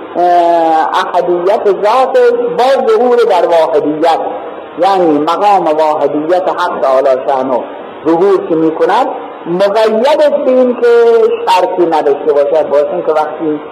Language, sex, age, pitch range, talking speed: Persian, male, 50-69, 170-260 Hz, 100 wpm